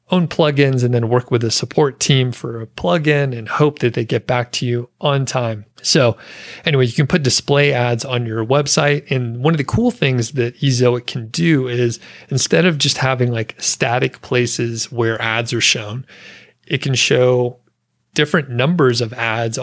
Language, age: English, 30-49